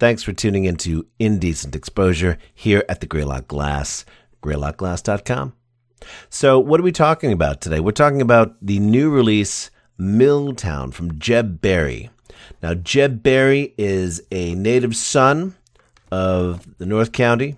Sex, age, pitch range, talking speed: male, 40-59, 90-125 Hz, 135 wpm